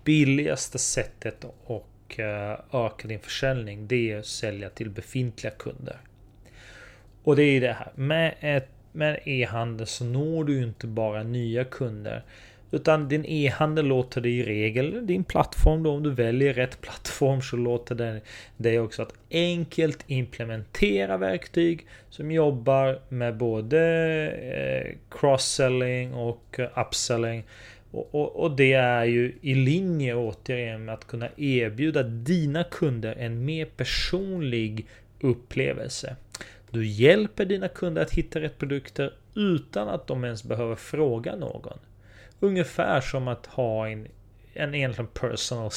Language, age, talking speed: Swedish, 30-49, 130 wpm